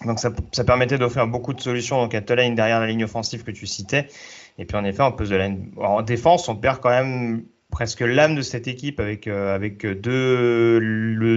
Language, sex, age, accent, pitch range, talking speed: French, male, 30-49, French, 110-130 Hz, 210 wpm